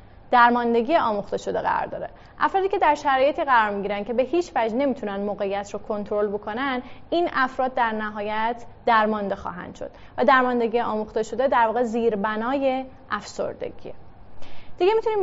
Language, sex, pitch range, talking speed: Persian, female, 215-270 Hz, 145 wpm